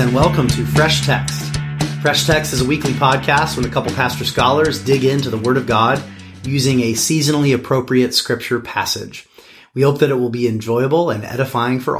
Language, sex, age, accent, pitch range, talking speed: English, male, 30-49, American, 110-135 Hz, 190 wpm